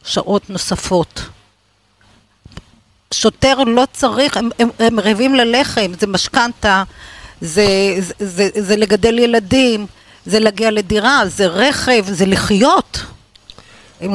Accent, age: native, 50-69